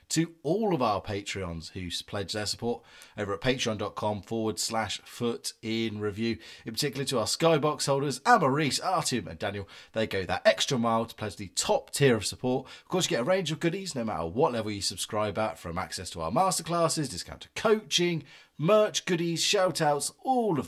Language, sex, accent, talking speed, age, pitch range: English, male, British, 190 wpm, 30-49, 85-140 Hz